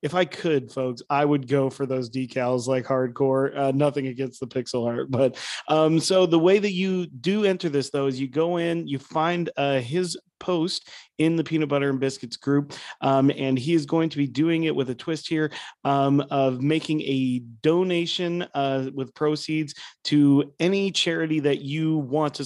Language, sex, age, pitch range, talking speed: English, male, 30-49, 130-160 Hz, 195 wpm